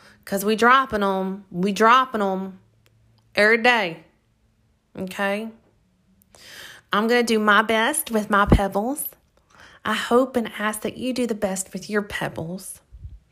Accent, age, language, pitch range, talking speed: American, 30-49, English, 180-215 Hz, 140 wpm